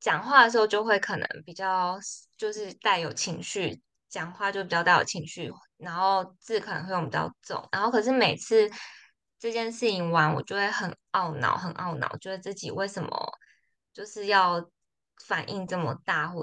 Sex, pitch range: female, 180-230 Hz